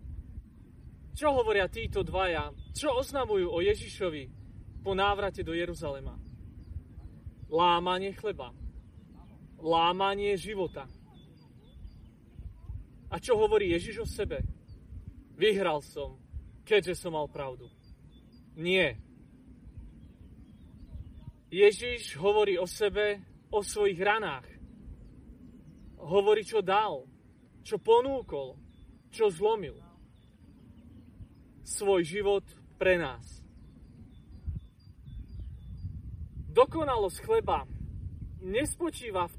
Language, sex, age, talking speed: Slovak, male, 30-49, 80 wpm